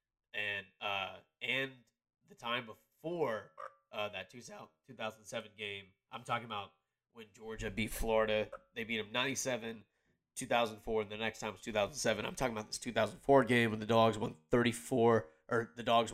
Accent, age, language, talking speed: American, 20-39, English, 160 wpm